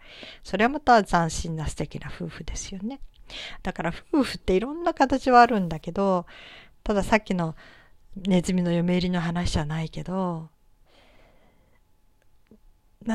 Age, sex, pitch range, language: 40-59, female, 160-215 Hz, Japanese